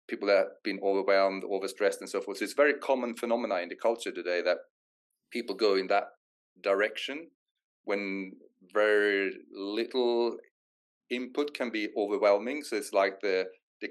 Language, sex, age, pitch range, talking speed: Swedish, male, 30-49, 95-125 Hz, 150 wpm